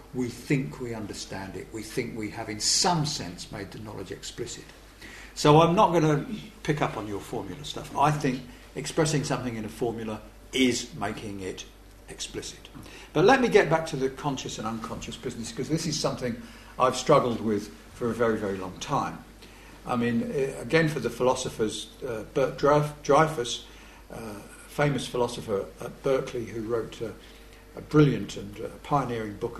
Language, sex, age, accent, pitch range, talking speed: English, male, 50-69, British, 115-150 Hz, 175 wpm